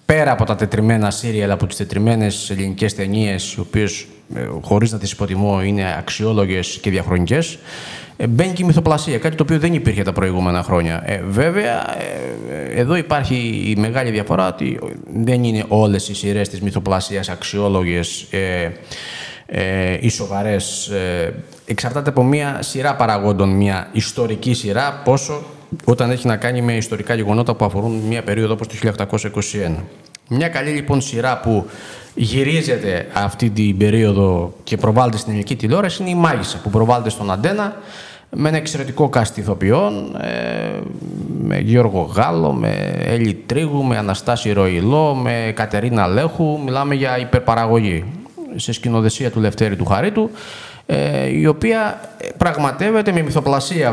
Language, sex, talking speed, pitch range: Greek, male, 140 wpm, 100-155 Hz